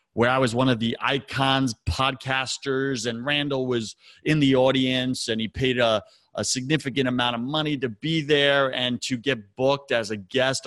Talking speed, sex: 185 wpm, male